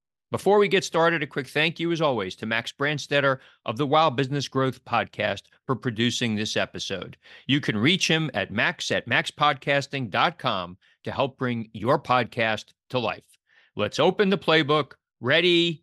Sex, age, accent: male, 40-59, American